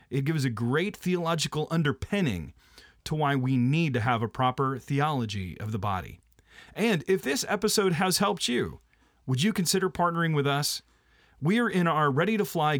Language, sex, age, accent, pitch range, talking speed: English, male, 40-59, American, 140-190 Hz, 180 wpm